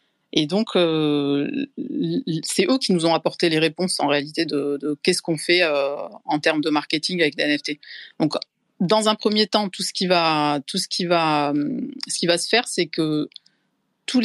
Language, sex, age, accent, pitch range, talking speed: English, female, 30-49, French, 150-185 Hz, 200 wpm